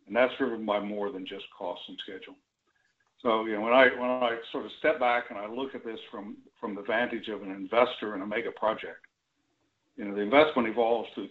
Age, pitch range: 60-79, 105-130 Hz